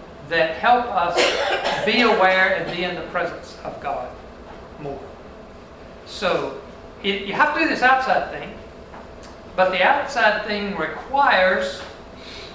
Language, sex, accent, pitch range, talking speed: English, male, American, 180-225 Hz, 125 wpm